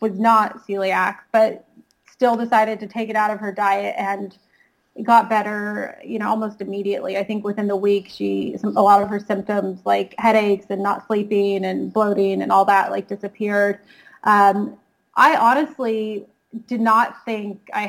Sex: female